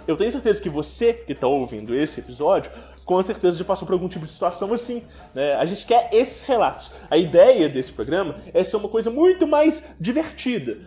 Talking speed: 205 wpm